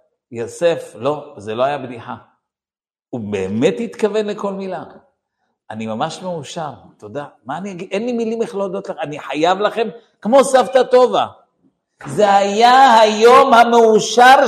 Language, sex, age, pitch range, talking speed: Hebrew, male, 50-69, 165-250 Hz, 145 wpm